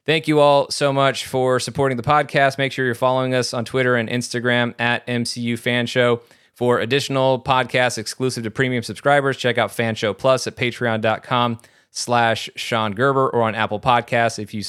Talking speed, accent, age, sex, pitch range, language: 180 wpm, American, 30-49, male, 110-135 Hz, English